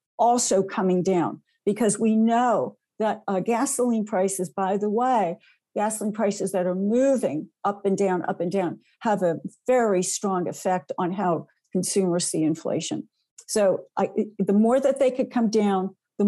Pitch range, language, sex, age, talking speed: 180-210 Hz, English, female, 60-79, 160 wpm